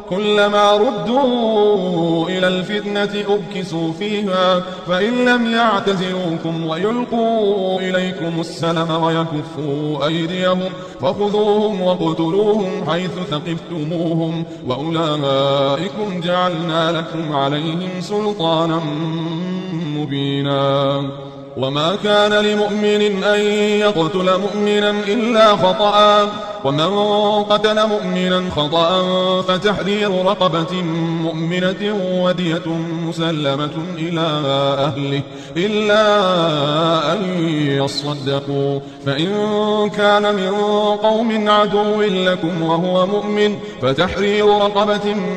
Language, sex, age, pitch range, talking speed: Indonesian, male, 30-49, 165-210 Hz, 75 wpm